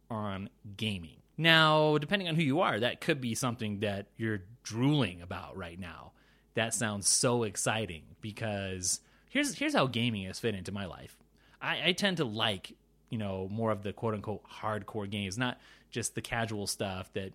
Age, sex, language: 30-49, male, English